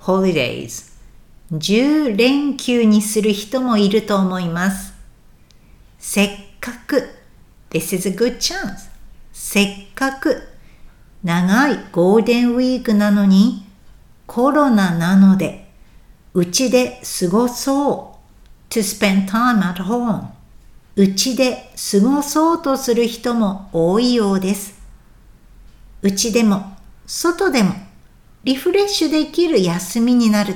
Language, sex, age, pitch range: Japanese, female, 60-79, 190-260 Hz